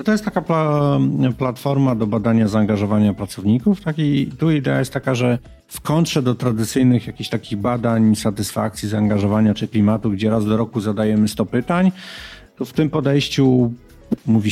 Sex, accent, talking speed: male, native, 160 wpm